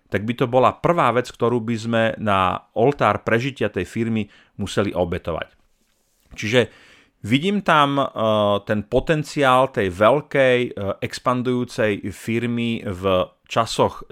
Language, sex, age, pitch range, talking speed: Slovak, male, 30-49, 110-135 Hz, 125 wpm